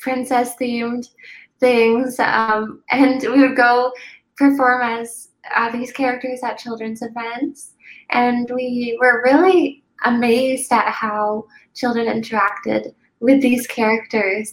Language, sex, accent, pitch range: English, female, American, 230-270 Hz